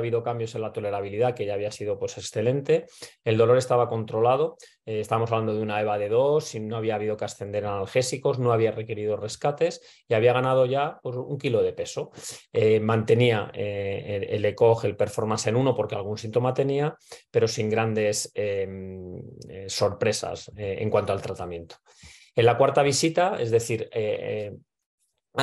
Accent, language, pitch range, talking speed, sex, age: Spanish, German, 110-135 Hz, 175 wpm, male, 30-49